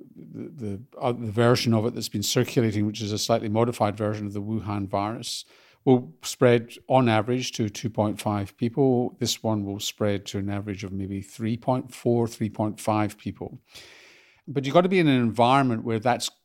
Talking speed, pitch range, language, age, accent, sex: 180 wpm, 105-125 Hz, English, 50-69, British, male